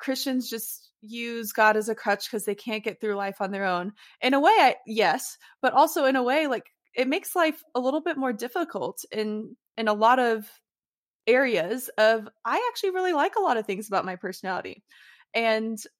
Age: 20-39